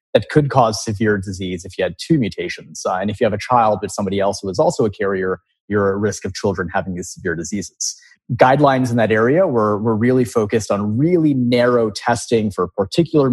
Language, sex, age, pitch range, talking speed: English, male, 30-49, 100-125 Hz, 215 wpm